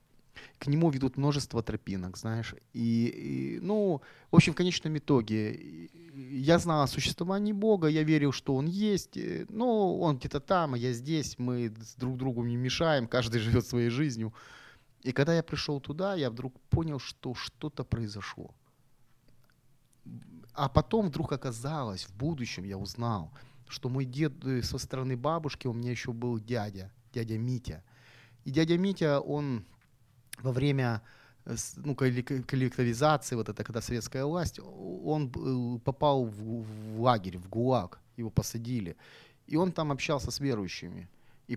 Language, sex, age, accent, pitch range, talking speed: Ukrainian, male, 30-49, native, 115-145 Hz, 145 wpm